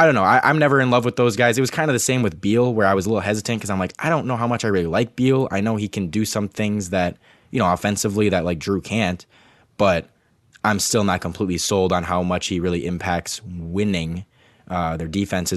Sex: male